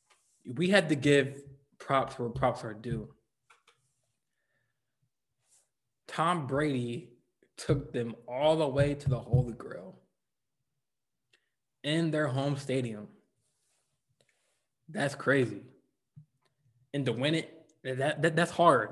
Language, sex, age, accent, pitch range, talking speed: English, male, 20-39, American, 125-150 Hz, 110 wpm